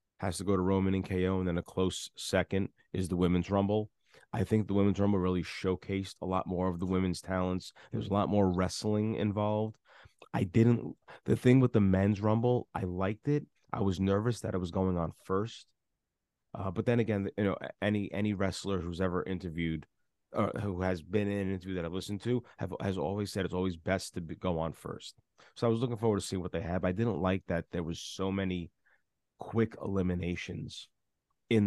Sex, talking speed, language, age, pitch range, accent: male, 215 wpm, English, 30-49, 90-105 Hz, American